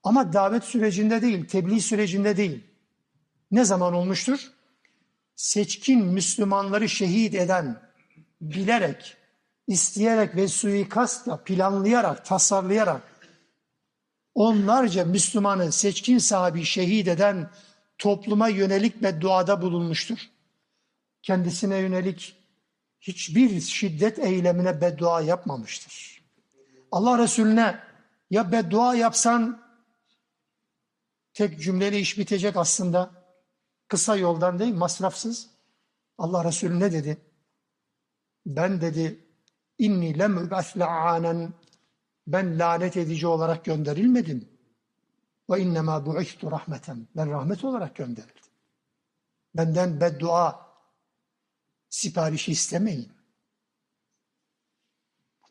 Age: 60-79